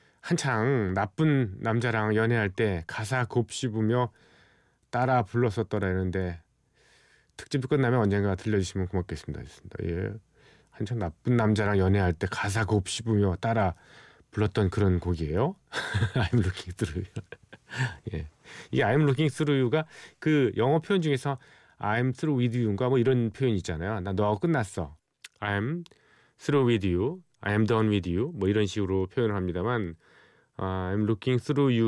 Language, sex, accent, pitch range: Korean, male, native, 100-130 Hz